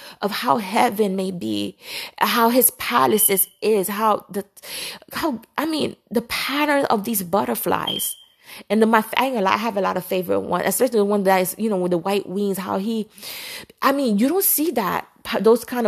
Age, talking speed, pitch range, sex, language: 20-39, 195 wpm, 195-245 Hz, female, English